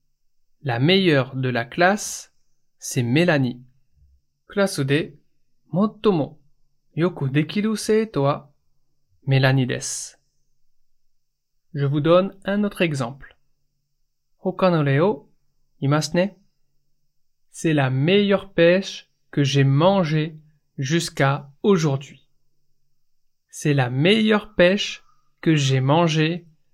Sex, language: male, Japanese